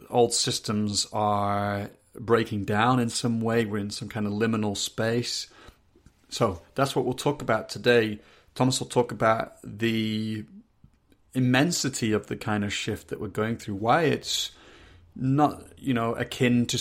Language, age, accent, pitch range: English, 30-49, British, 105-120 Hz